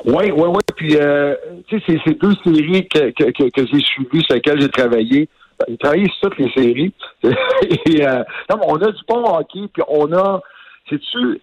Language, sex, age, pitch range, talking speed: French, male, 60-79, 135-195 Hz, 210 wpm